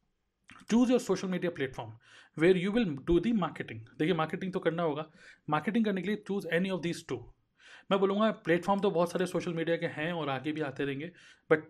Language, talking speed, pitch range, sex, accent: Hindi, 210 wpm, 150-190 Hz, male, native